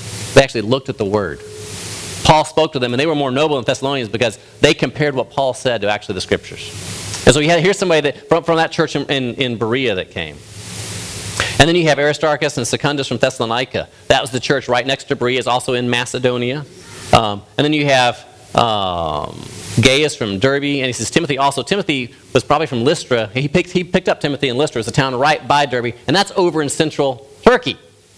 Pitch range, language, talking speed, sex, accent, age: 115-155 Hz, English, 220 wpm, male, American, 40-59